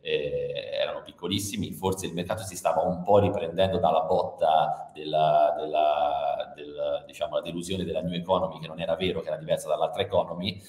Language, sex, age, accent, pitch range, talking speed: Italian, male, 30-49, native, 80-115 Hz, 175 wpm